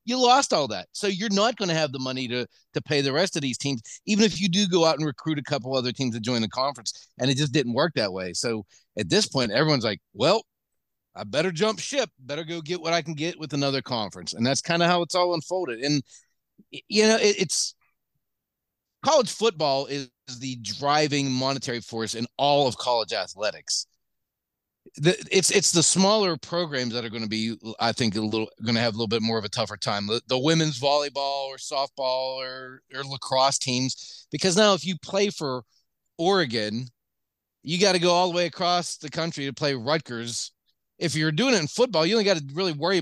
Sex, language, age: male, English, 40-59